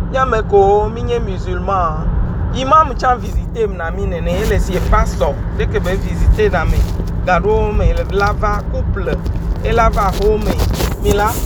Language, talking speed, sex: English, 105 wpm, male